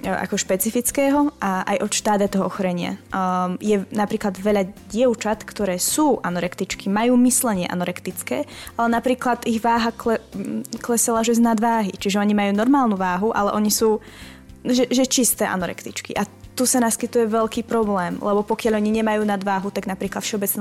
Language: Slovak